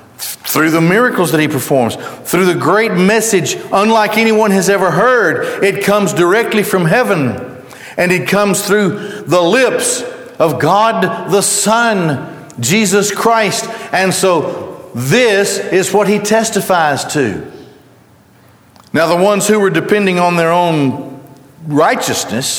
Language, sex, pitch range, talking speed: English, male, 145-205 Hz, 135 wpm